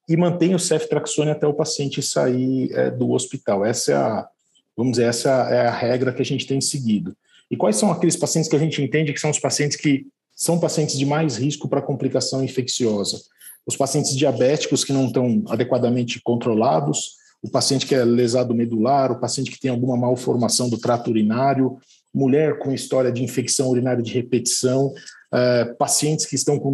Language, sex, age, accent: Portuguese, male, 40-59, Brazilian